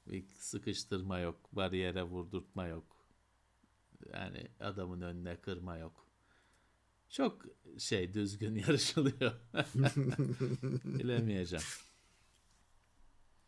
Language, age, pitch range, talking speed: Turkish, 50-69, 100-145 Hz, 70 wpm